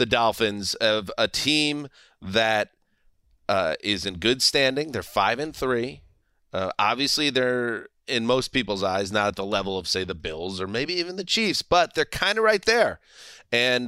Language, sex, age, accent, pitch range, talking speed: English, male, 30-49, American, 100-130 Hz, 180 wpm